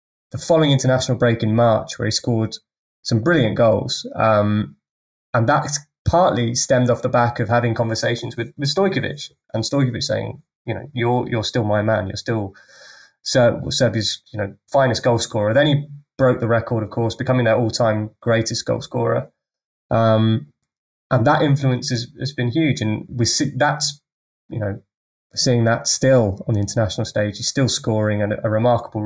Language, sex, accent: English, male, British